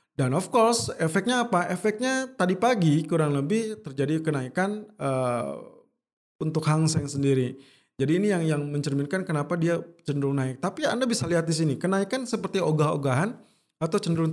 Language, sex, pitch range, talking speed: Indonesian, male, 140-180 Hz, 155 wpm